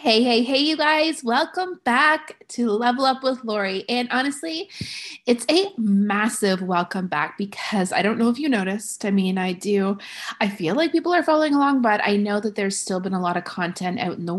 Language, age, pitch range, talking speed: English, 30-49, 195-255 Hz, 215 wpm